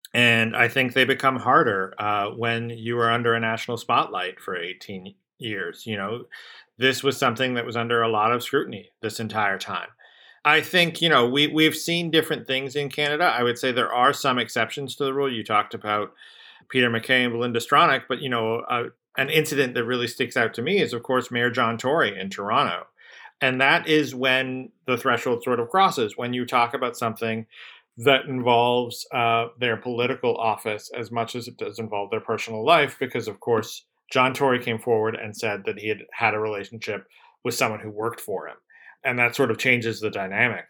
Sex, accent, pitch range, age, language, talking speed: male, American, 115-135 Hz, 40-59, English, 205 wpm